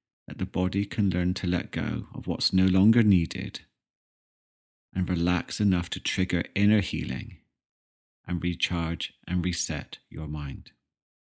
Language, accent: English, British